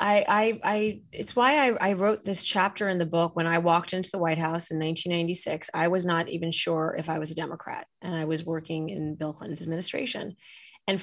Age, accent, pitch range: 30-49, American, 160-195 Hz